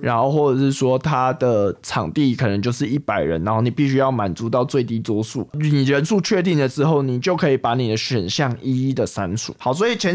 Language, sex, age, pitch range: Chinese, male, 20-39, 125-155 Hz